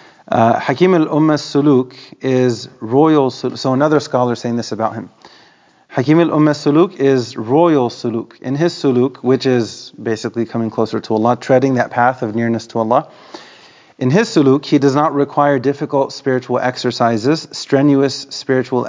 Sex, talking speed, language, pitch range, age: male, 150 wpm, English, 115-140 Hz, 30-49